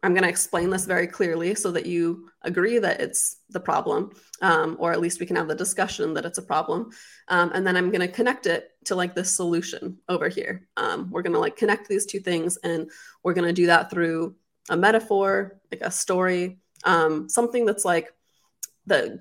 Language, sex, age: English, female, 20-39